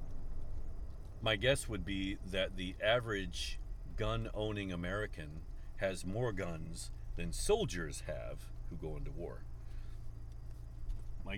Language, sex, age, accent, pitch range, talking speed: English, male, 50-69, American, 80-110 Hz, 105 wpm